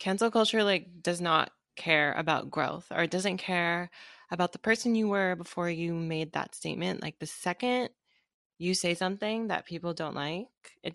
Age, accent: 20-39, American